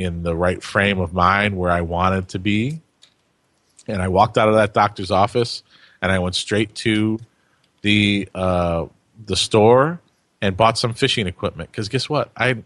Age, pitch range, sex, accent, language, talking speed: 30-49, 95-120 Hz, male, American, English, 175 wpm